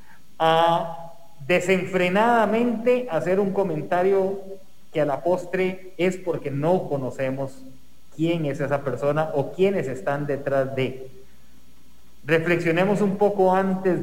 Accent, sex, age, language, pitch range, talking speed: Mexican, male, 30-49, English, 145-195 Hz, 110 wpm